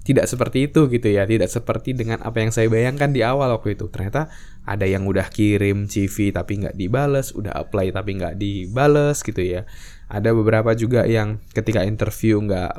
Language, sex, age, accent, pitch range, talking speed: Indonesian, male, 10-29, native, 100-125 Hz, 185 wpm